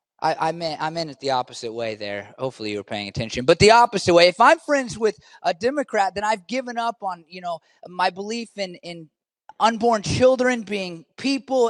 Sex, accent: male, American